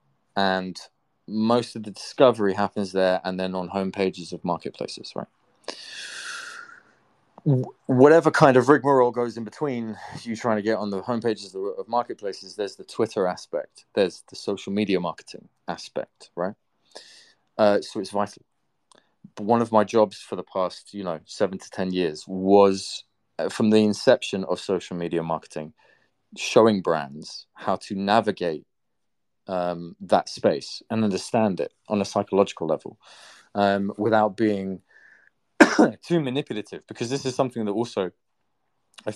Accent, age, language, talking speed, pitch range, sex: British, 20-39, English, 145 wpm, 95-130 Hz, male